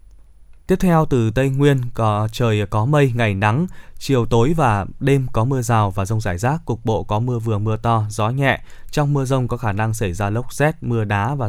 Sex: male